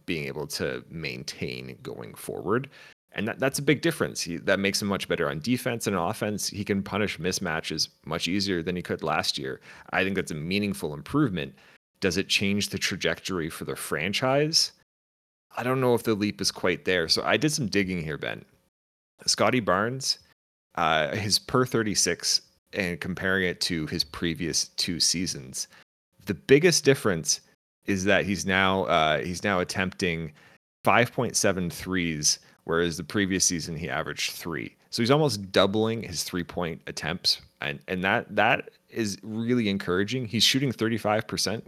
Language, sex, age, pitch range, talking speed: English, male, 30-49, 85-115 Hz, 165 wpm